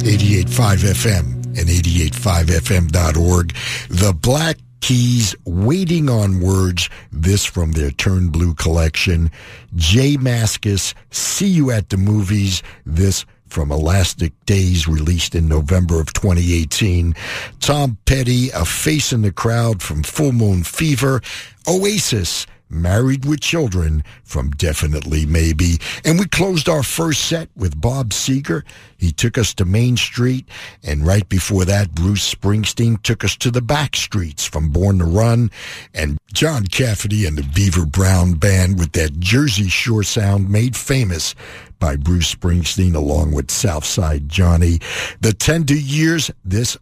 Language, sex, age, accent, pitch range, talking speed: English, male, 60-79, American, 85-115 Hz, 135 wpm